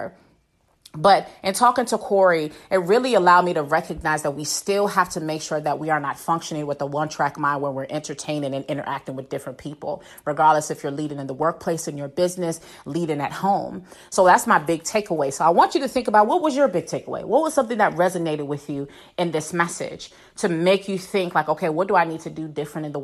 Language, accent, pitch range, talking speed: English, American, 150-195 Hz, 235 wpm